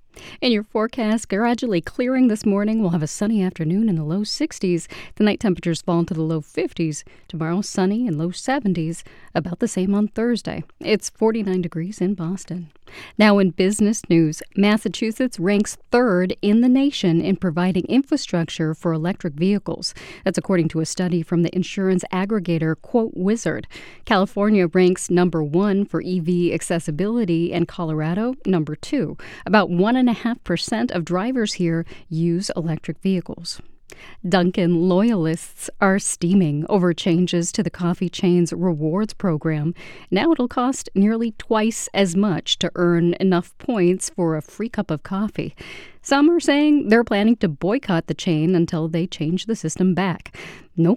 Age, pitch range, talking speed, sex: 40-59, 170-215 Hz, 160 wpm, female